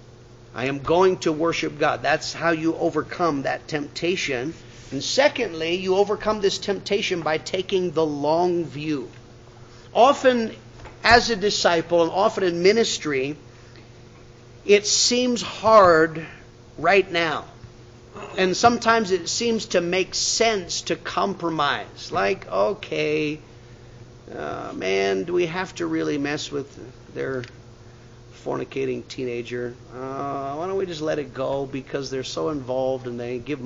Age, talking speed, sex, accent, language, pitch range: 50-69, 130 wpm, male, American, English, 120-175 Hz